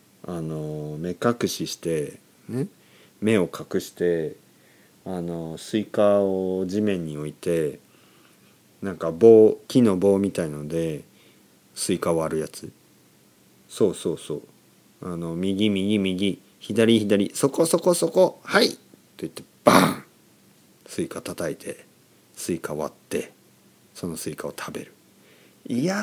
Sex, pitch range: male, 85-120 Hz